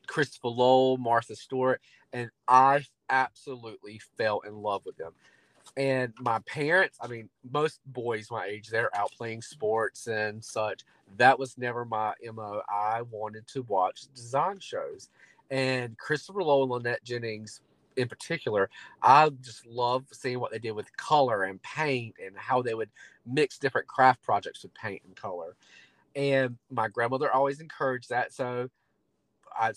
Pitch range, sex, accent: 115-135 Hz, male, American